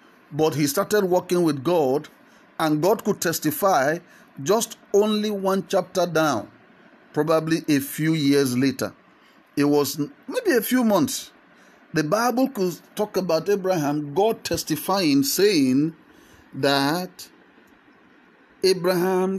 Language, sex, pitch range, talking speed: English, male, 130-165 Hz, 115 wpm